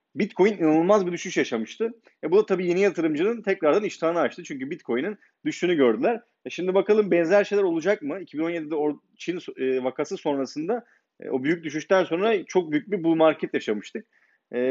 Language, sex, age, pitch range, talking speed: Turkish, male, 30-49, 130-175 Hz, 165 wpm